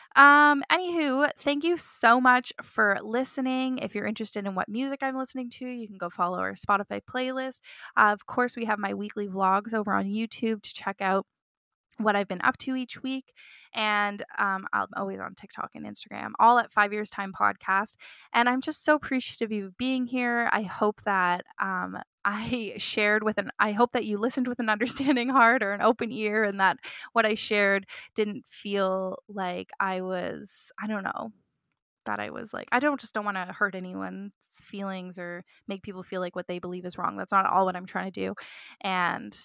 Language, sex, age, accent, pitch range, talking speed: English, female, 20-39, American, 195-245 Hz, 205 wpm